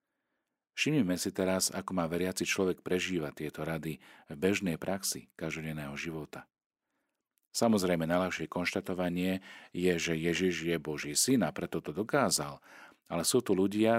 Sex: male